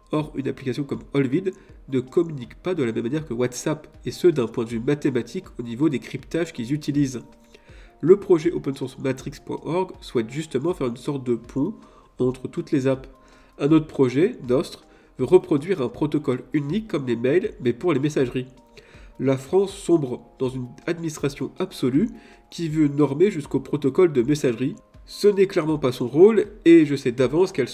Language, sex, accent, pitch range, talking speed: French, male, French, 125-170 Hz, 175 wpm